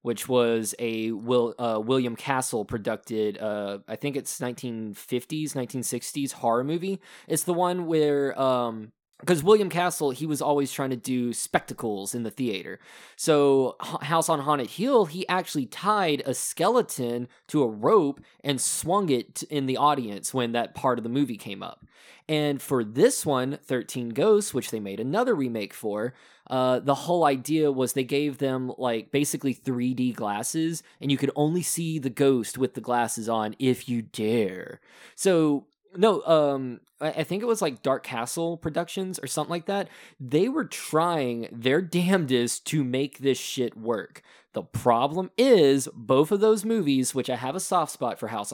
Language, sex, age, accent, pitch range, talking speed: English, male, 20-39, American, 120-160 Hz, 175 wpm